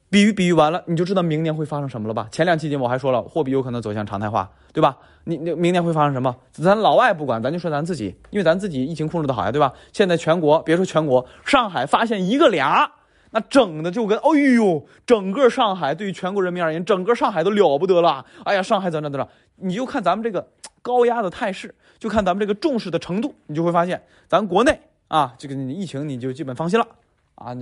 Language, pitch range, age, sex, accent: Chinese, 130-210 Hz, 20-39, male, native